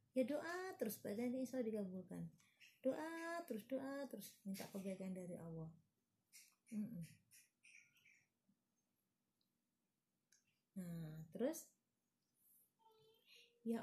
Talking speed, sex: 75 wpm, female